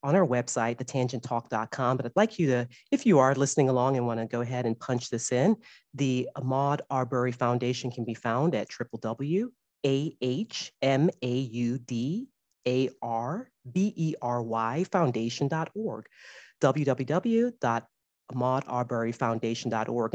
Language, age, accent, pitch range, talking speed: English, 40-59, American, 120-150 Hz, 95 wpm